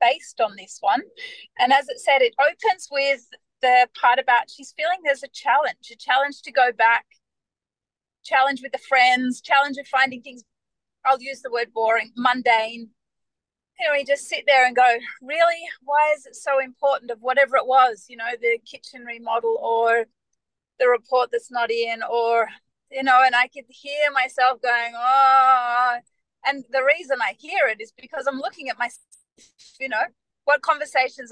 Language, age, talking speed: English, 30-49, 180 wpm